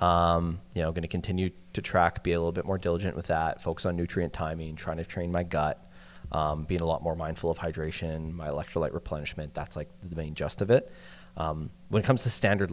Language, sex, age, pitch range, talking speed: English, male, 20-39, 85-100 Hz, 230 wpm